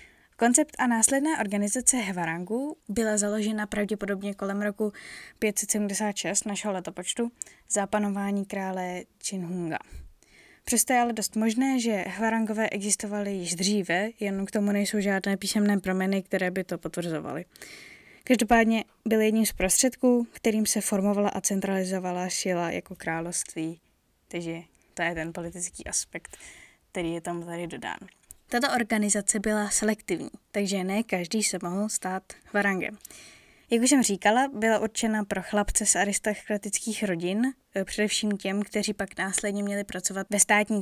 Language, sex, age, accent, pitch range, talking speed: Czech, female, 20-39, native, 190-220 Hz, 135 wpm